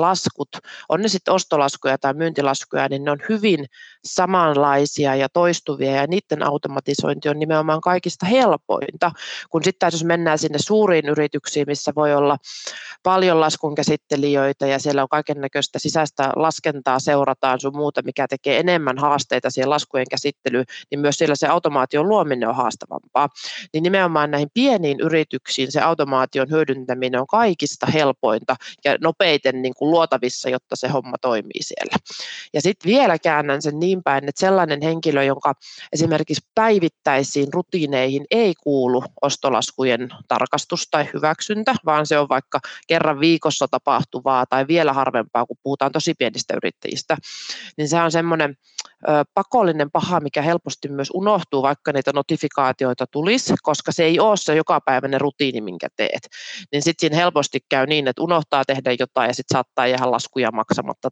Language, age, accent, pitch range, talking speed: Finnish, 30-49, native, 135-165 Hz, 150 wpm